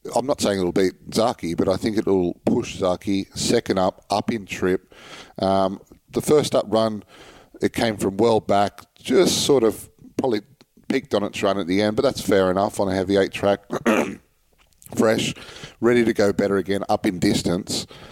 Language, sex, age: English, male, 40-59